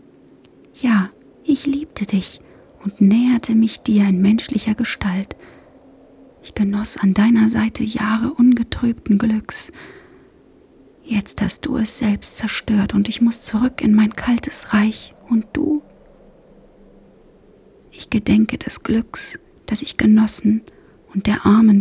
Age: 30-49